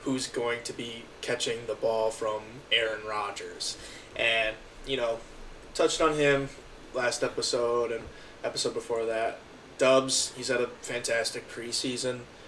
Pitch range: 115-135 Hz